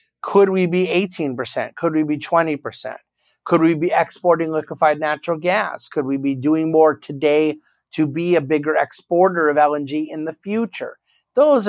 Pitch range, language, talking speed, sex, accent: 130-165 Hz, English, 165 wpm, male, American